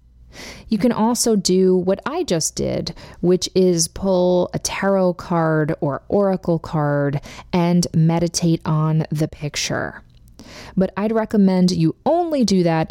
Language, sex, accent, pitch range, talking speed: English, female, American, 150-195 Hz, 135 wpm